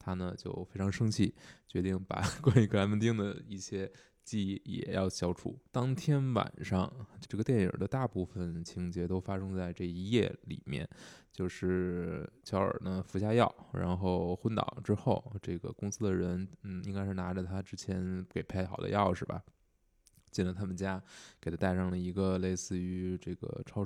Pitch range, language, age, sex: 90-105 Hz, Chinese, 20-39, male